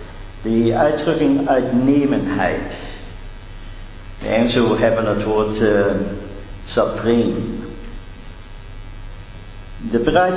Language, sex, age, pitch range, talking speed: Dutch, male, 50-69, 95-120 Hz, 75 wpm